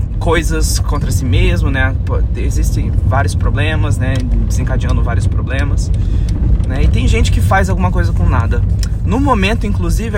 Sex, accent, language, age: male, Brazilian, Portuguese, 20-39